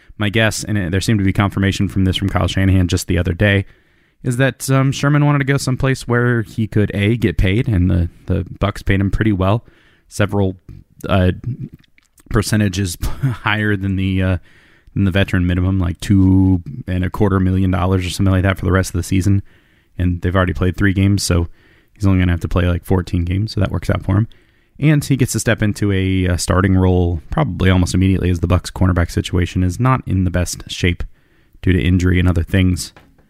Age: 20-39